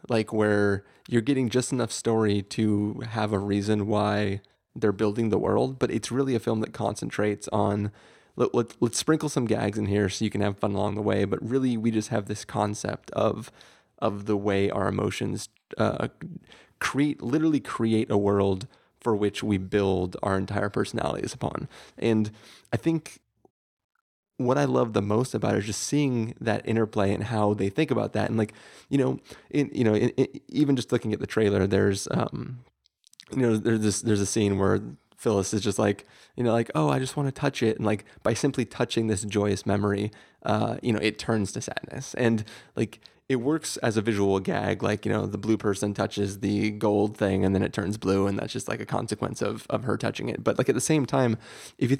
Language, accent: English, American